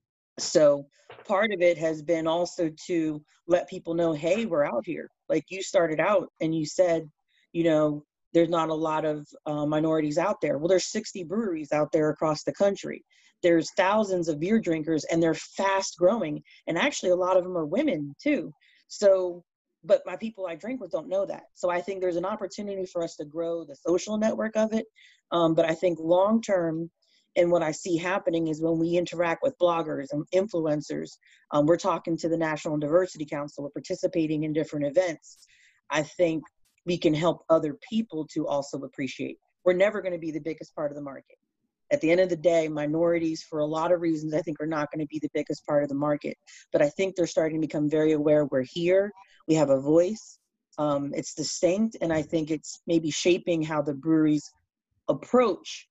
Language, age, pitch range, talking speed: English, 30-49, 155-185 Hz, 205 wpm